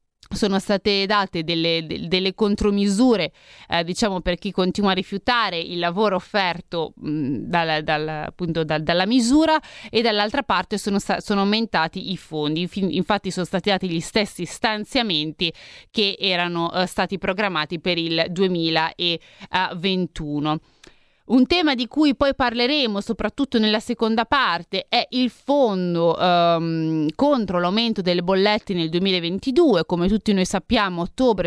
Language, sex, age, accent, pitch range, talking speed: Italian, female, 30-49, native, 170-215 Hz, 135 wpm